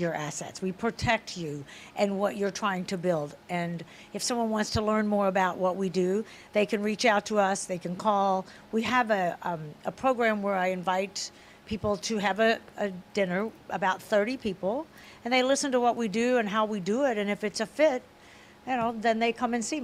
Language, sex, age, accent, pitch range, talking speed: English, female, 60-79, American, 195-235 Hz, 220 wpm